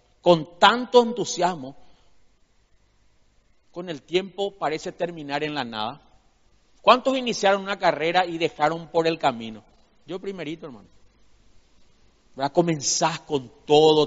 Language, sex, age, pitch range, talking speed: Spanish, male, 40-59, 130-165 Hz, 115 wpm